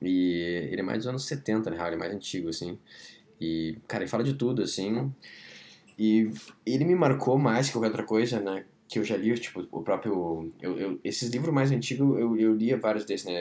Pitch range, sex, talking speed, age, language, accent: 80-110 Hz, male, 220 wpm, 10-29, Portuguese, Brazilian